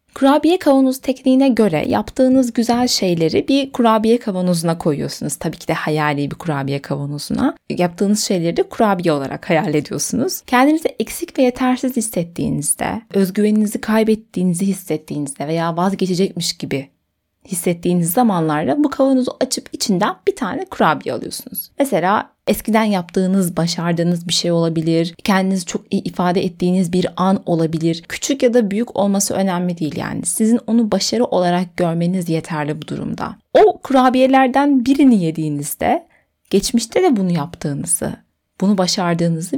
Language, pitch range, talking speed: Turkish, 170-245 Hz, 130 wpm